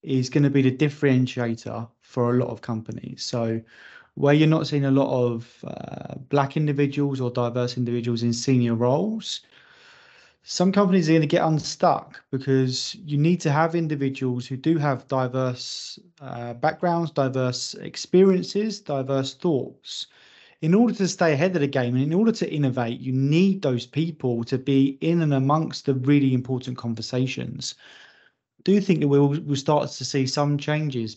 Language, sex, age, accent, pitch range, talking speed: English, male, 20-39, British, 125-155 Hz, 170 wpm